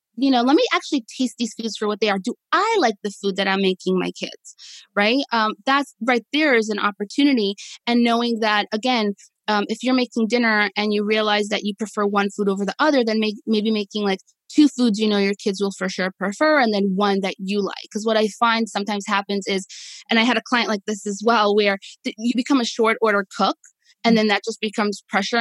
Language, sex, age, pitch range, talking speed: English, female, 20-39, 195-235 Hz, 230 wpm